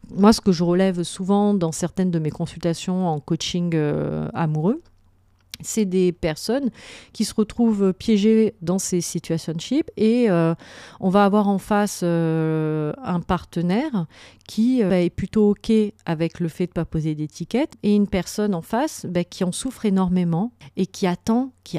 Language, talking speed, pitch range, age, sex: French, 170 wpm, 160-205 Hz, 40-59, female